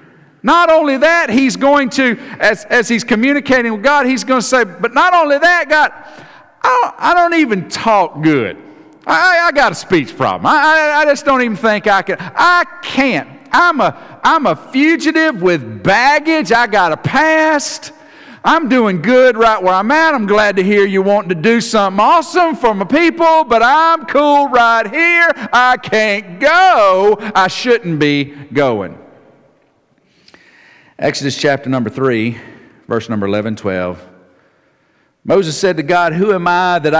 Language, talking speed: English, 170 wpm